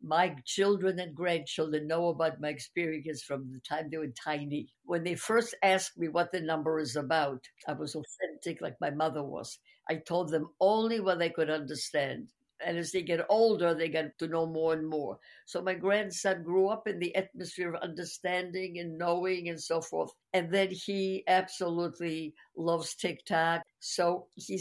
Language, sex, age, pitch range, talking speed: English, female, 60-79, 170-220 Hz, 180 wpm